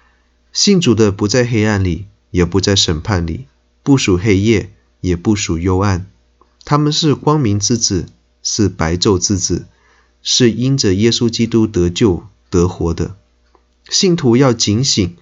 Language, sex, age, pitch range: Chinese, male, 30-49, 85-115 Hz